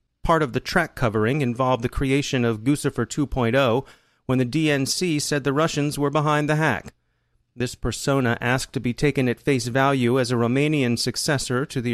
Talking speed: 180 wpm